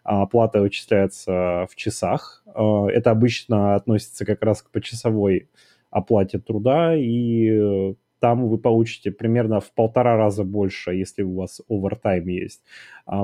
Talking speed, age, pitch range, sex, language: 130 wpm, 20-39, 100-120 Hz, male, Russian